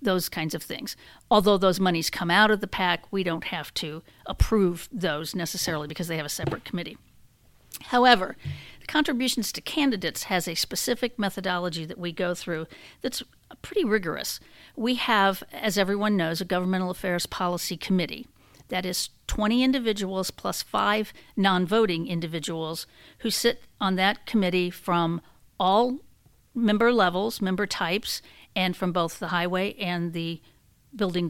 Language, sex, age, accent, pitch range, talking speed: English, female, 50-69, American, 175-210 Hz, 150 wpm